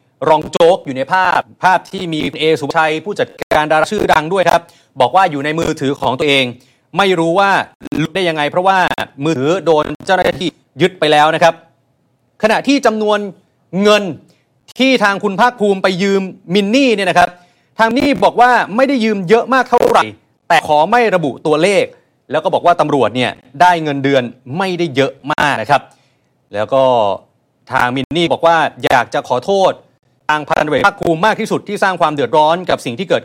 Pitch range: 140-200 Hz